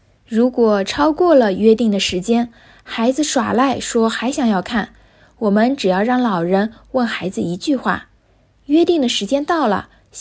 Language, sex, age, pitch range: Chinese, female, 20-39, 195-260 Hz